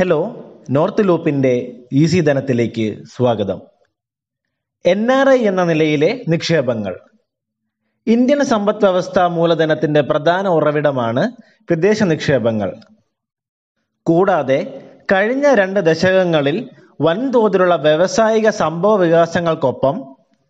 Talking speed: 80 wpm